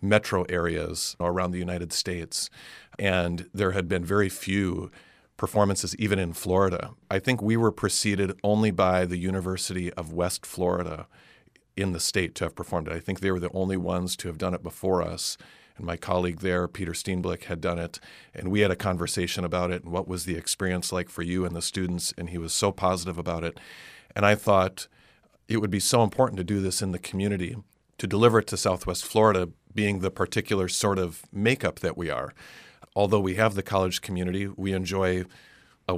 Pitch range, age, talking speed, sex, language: 90-100 Hz, 40-59, 200 wpm, male, English